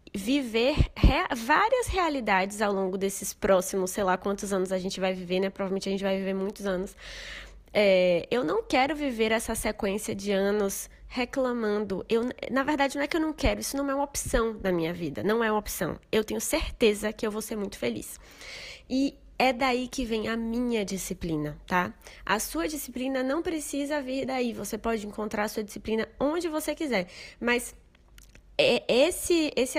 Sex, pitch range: female, 195-260 Hz